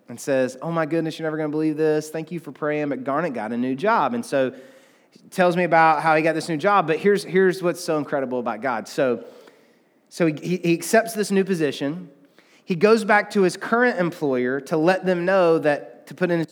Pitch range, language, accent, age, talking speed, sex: 135-185 Hz, English, American, 30-49, 235 wpm, male